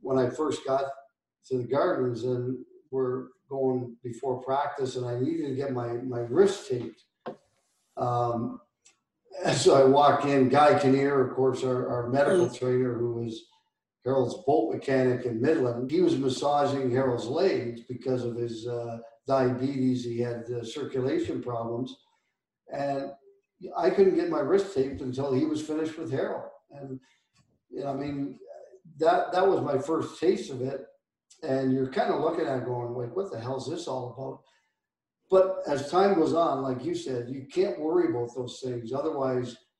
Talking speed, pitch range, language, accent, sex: 165 wpm, 125-150 Hz, English, American, male